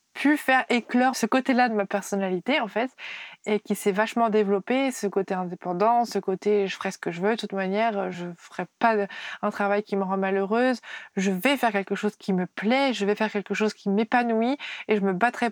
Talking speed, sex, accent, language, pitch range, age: 225 wpm, female, French, French, 205-245 Hz, 20-39